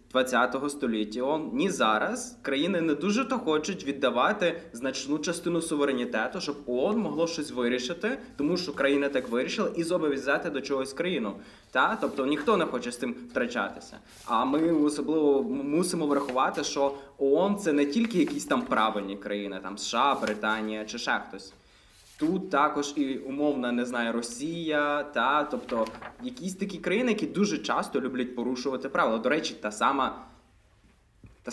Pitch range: 125-160 Hz